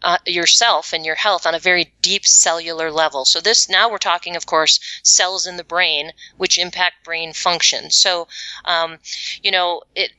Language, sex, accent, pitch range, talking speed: English, female, American, 165-205 Hz, 185 wpm